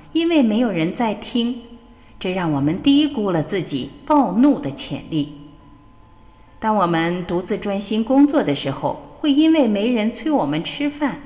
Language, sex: Chinese, female